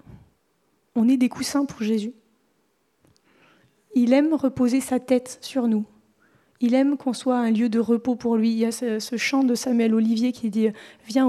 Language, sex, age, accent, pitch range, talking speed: French, female, 30-49, French, 225-260 Hz, 180 wpm